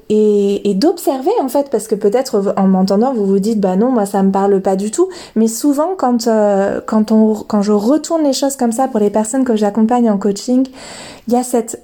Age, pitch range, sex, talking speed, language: 20-39, 210-255 Hz, female, 235 wpm, French